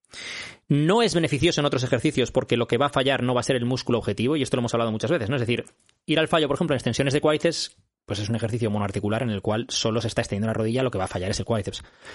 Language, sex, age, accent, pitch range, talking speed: Spanish, male, 20-39, Spanish, 120-155 Hz, 295 wpm